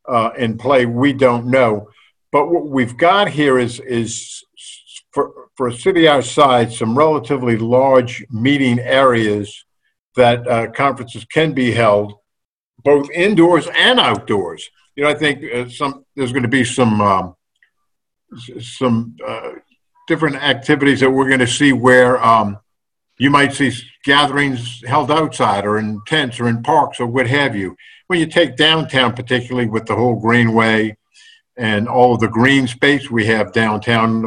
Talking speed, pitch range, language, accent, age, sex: 165 wpm, 115-145 Hz, English, American, 50-69, male